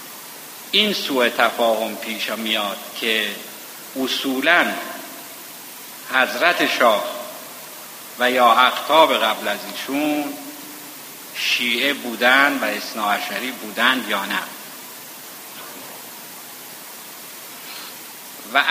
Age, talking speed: 50-69, 75 wpm